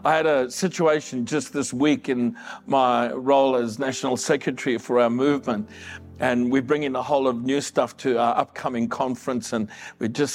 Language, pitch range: English, 115-160 Hz